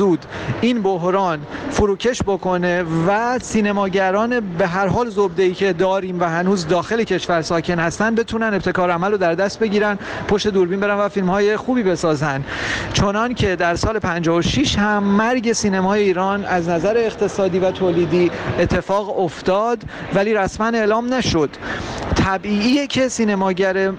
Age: 40-59